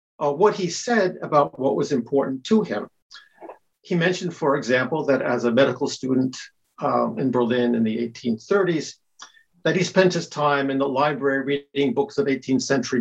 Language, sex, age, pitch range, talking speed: English, male, 50-69, 140-190 Hz, 175 wpm